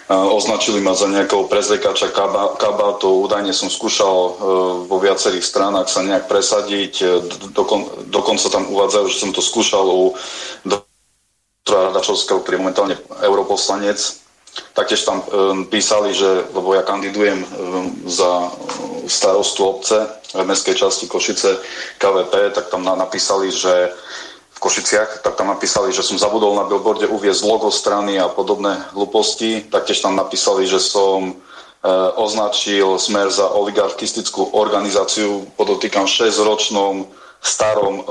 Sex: male